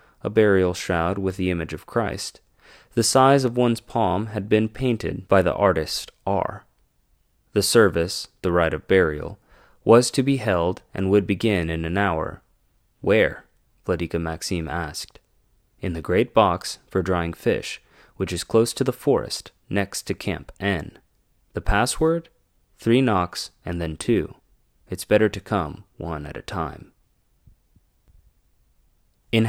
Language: English